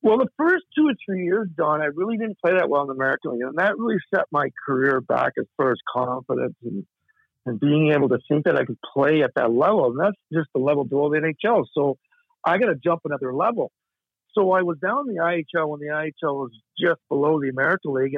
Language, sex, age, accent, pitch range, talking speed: English, male, 50-69, American, 145-195 Hz, 240 wpm